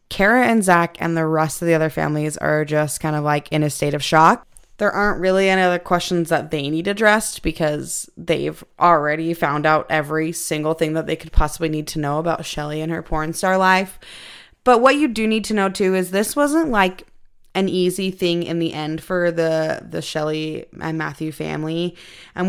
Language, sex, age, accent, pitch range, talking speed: English, female, 20-39, American, 155-185 Hz, 210 wpm